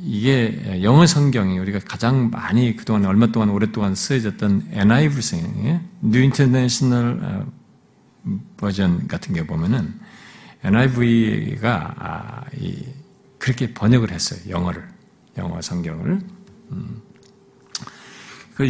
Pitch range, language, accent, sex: 105-155 Hz, Korean, native, male